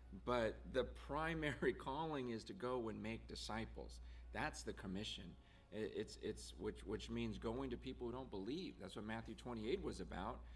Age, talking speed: 40-59, 170 wpm